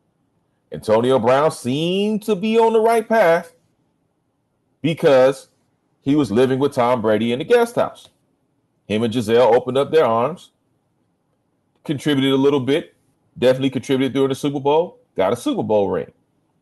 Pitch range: 130-200 Hz